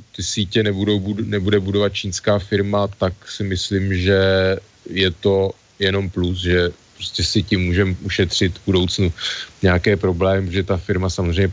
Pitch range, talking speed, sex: 90-100 Hz, 155 wpm, male